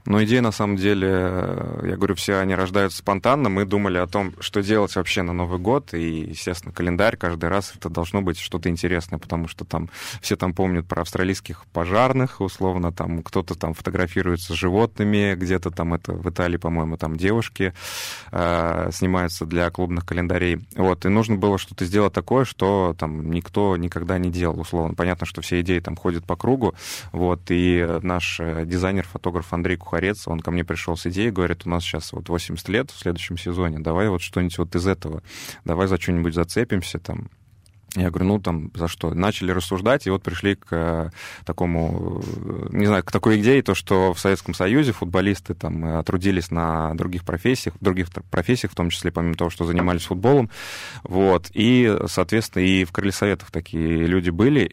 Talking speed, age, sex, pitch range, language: 180 wpm, 20-39, male, 85-100 Hz, Russian